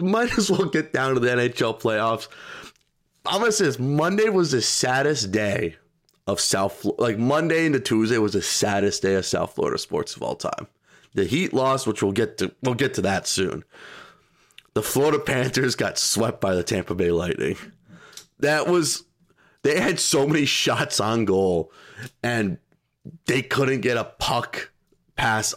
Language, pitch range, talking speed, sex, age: English, 115-155 Hz, 170 wpm, male, 30-49